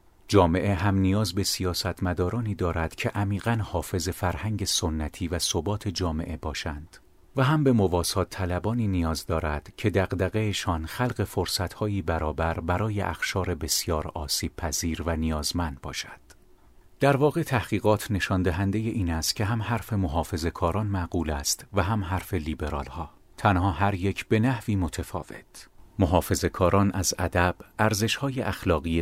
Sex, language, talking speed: male, Persian, 135 wpm